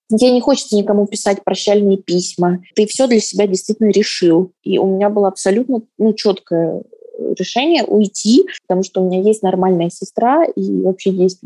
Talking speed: 170 wpm